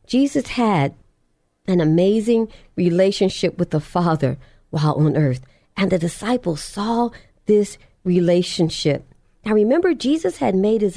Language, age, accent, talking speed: English, 50-69, American, 125 wpm